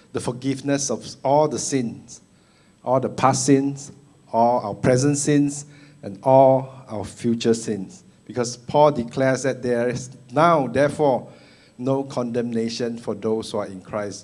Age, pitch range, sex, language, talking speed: 60-79, 110-140 Hz, male, English, 145 wpm